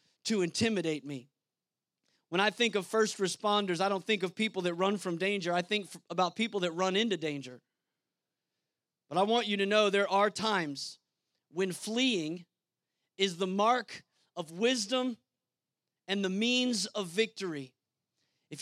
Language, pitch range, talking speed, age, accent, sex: English, 175-220 Hz, 160 wpm, 30-49, American, male